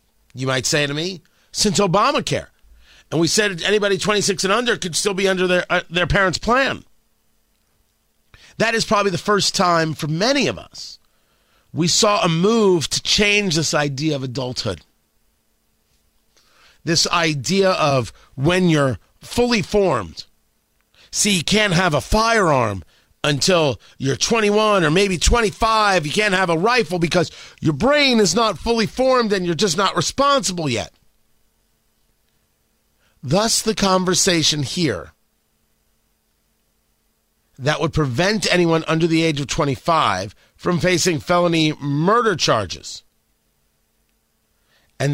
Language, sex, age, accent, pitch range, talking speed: English, male, 40-59, American, 130-200 Hz, 130 wpm